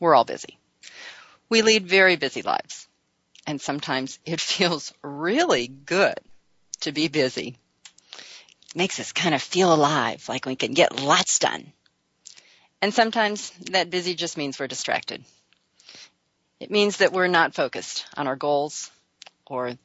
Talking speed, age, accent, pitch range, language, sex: 145 wpm, 40-59, American, 155-230 Hz, English, female